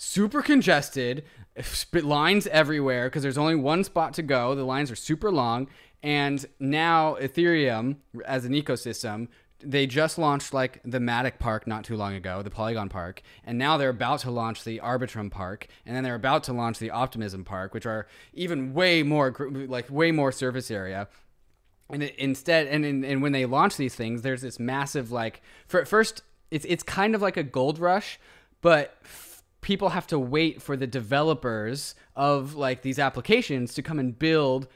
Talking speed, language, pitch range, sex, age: 185 wpm, English, 125-155 Hz, male, 20-39